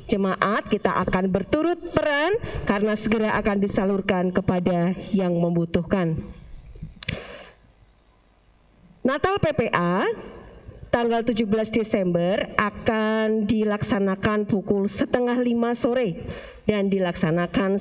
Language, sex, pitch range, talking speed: Indonesian, female, 190-260 Hz, 85 wpm